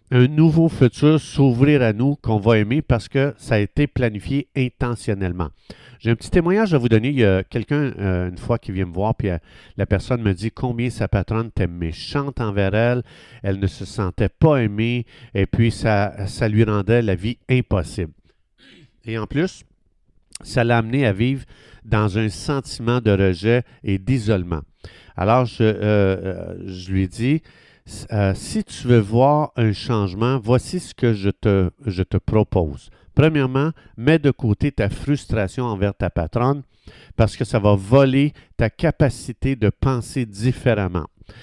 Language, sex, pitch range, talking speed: French, male, 100-135 Hz, 170 wpm